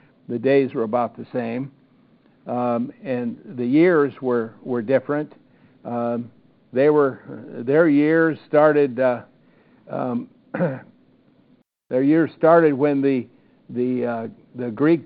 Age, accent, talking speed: 60-79, American, 120 wpm